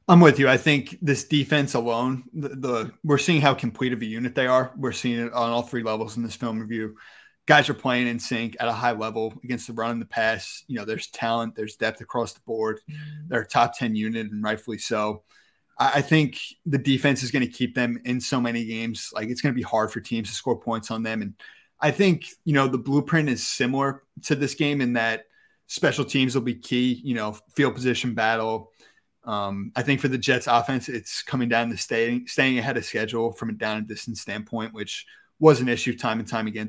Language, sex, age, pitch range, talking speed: English, male, 30-49, 115-140 Hz, 235 wpm